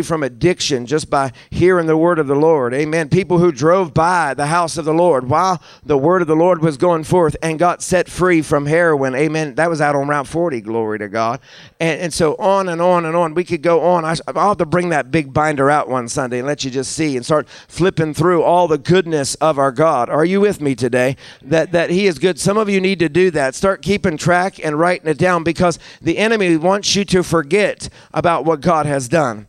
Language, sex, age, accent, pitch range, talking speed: English, male, 50-69, American, 155-185 Hz, 240 wpm